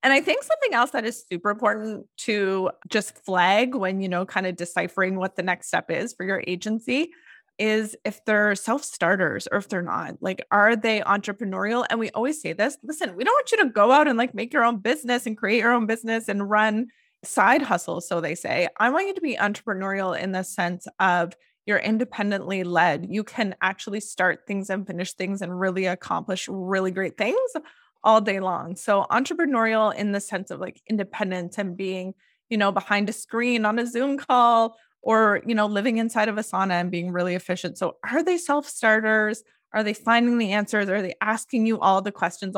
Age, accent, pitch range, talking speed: 20-39, American, 190-235 Hz, 205 wpm